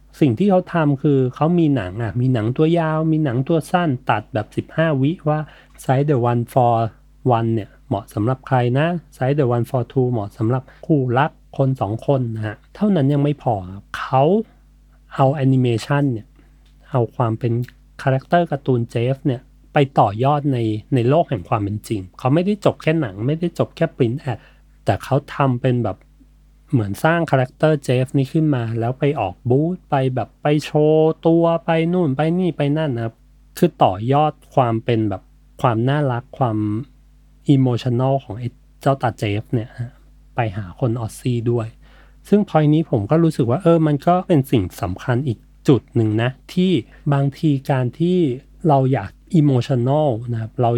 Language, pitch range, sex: Thai, 120-150 Hz, male